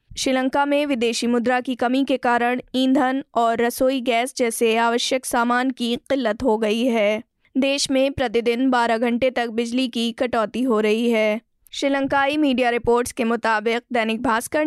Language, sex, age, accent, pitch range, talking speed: Hindi, female, 20-39, native, 235-265 Hz, 160 wpm